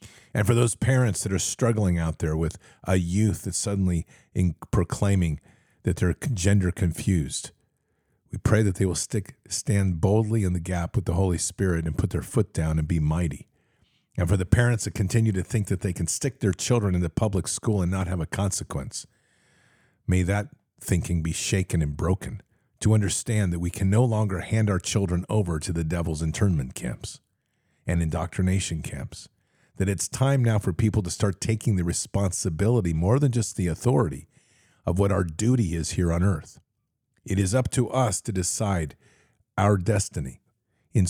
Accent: American